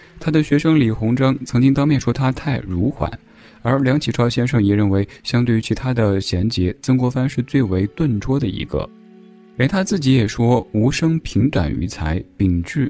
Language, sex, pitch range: Chinese, male, 95-135 Hz